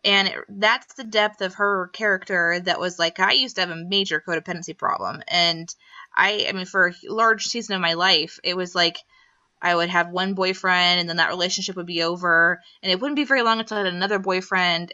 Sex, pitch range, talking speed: female, 175-205 Hz, 225 wpm